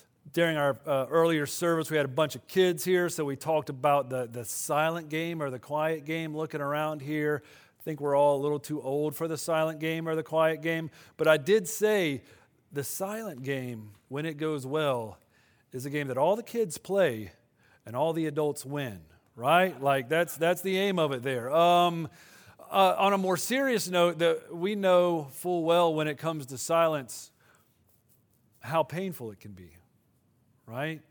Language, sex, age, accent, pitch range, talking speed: English, male, 40-59, American, 130-160 Hz, 190 wpm